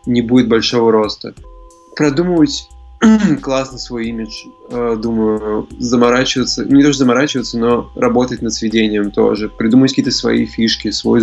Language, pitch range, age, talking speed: Russian, 110-120 Hz, 20-39, 125 wpm